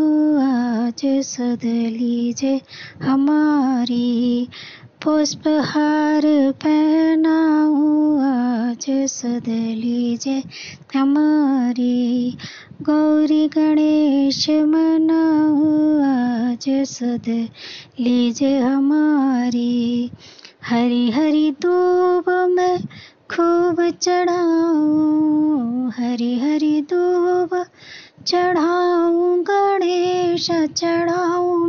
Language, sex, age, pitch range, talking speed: Hindi, male, 20-39, 245-320 Hz, 50 wpm